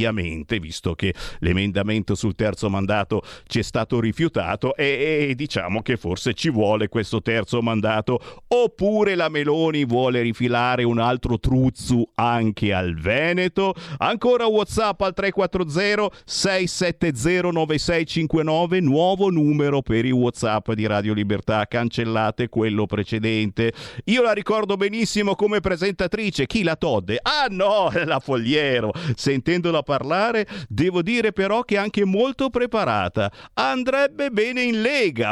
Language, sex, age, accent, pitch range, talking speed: Italian, male, 50-69, native, 105-175 Hz, 125 wpm